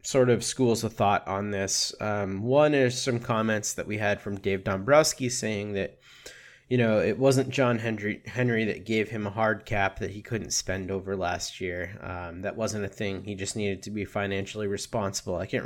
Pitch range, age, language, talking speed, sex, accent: 100-125 Hz, 20-39, English, 205 wpm, male, American